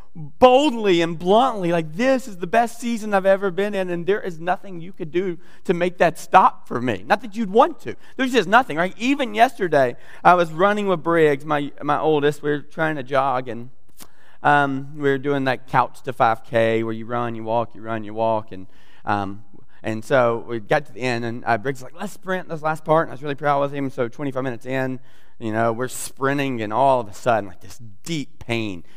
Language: English